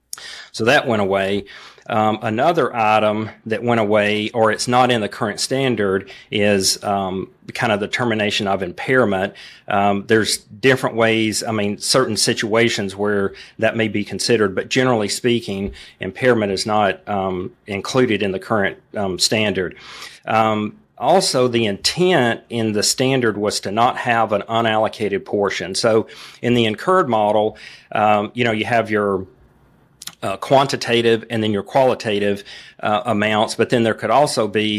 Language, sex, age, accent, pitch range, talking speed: English, male, 40-59, American, 105-120 Hz, 155 wpm